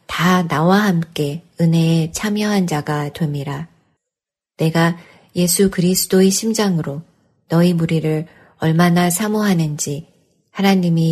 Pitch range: 155-180 Hz